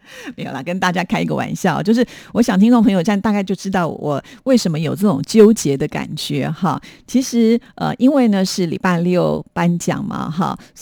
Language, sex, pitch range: Chinese, female, 160-200 Hz